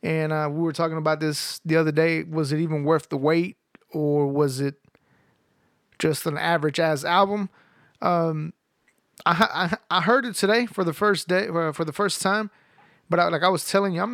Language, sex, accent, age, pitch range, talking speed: English, male, American, 30-49, 155-185 Hz, 200 wpm